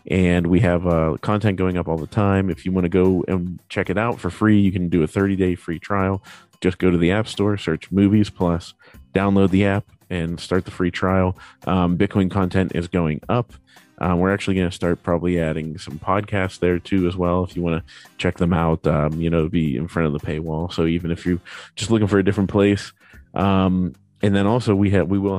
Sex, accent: male, American